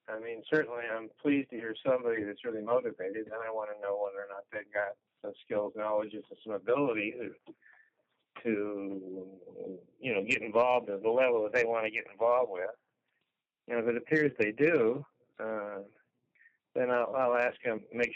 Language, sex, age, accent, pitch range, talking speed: English, male, 60-79, American, 105-145 Hz, 190 wpm